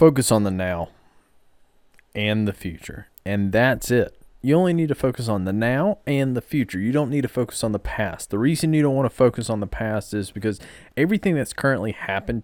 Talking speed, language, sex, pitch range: 215 wpm, English, male, 110-145 Hz